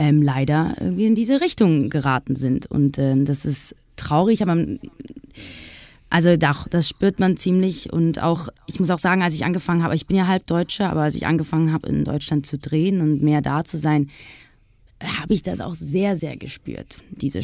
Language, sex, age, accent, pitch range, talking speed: German, female, 20-39, German, 145-185 Hz, 195 wpm